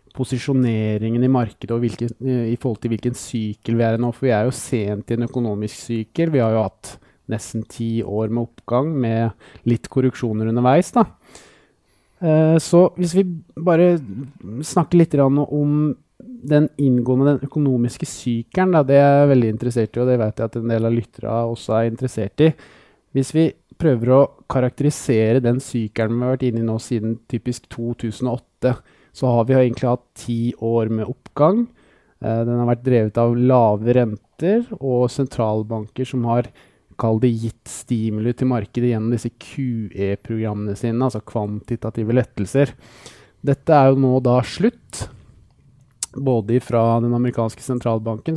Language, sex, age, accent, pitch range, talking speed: English, male, 20-39, Norwegian, 115-135 Hz, 155 wpm